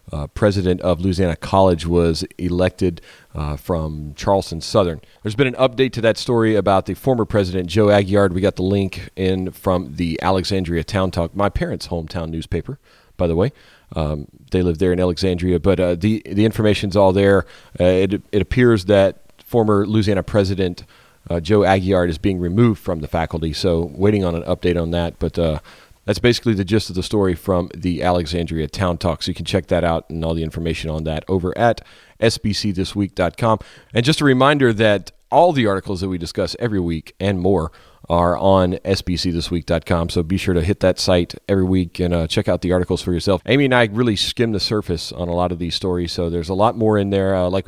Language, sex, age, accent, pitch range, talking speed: English, male, 40-59, American, 85-100 Hz, 205 wpm